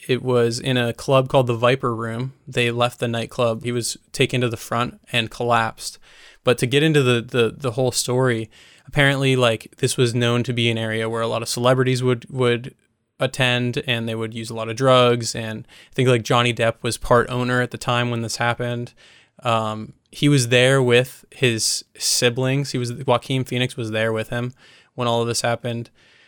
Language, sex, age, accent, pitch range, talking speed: English, male, 20-39, American, 115-130 Hz, 205 wpm